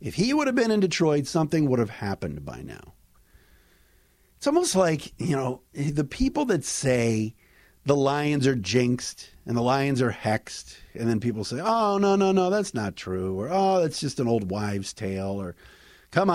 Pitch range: 105-180 Hz